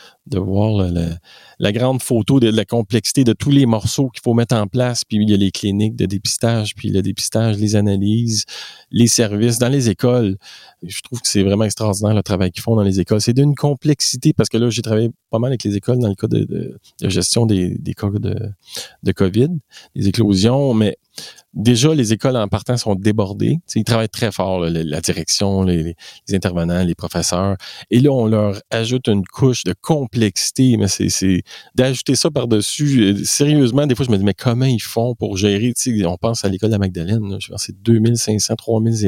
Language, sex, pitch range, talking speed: French, male, 100-120 Hz, 215 wpm